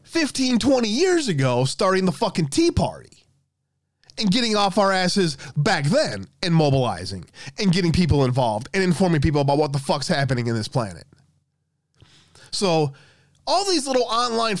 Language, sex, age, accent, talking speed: English, male, 20-39, American, 155 wpm